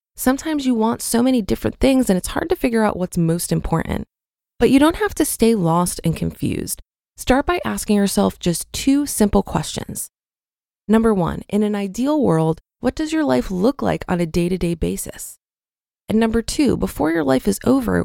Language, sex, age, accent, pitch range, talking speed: English, female, 20-39, American, 180-245 Hz, 190 wpm